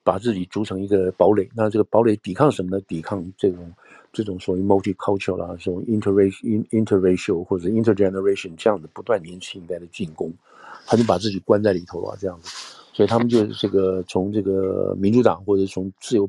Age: 50-69